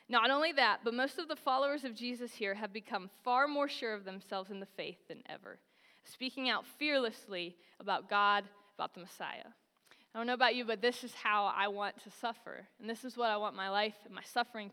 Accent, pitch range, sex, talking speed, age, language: American, 215-275 Hz, female, 225 wpm, 20-39, English